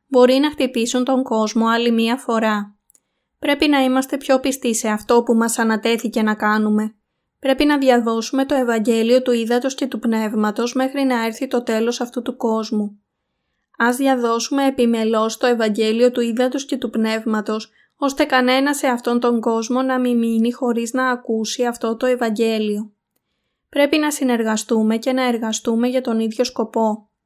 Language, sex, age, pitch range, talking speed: Greek, female, 20-39, 220-255 Hz, 160 wpm